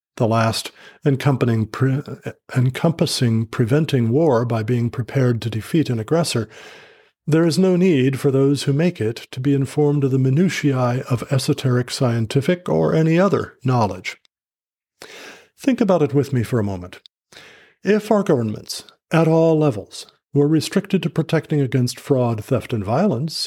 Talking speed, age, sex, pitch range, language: 145 wpm, 50-69, male, 120-160 Hz, English